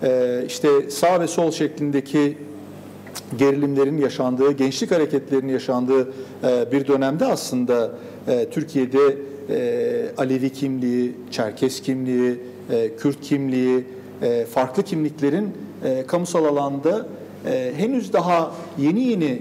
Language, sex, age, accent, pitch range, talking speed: Turkish, male, 50-69, native, 130-155 Hz, 85 wpm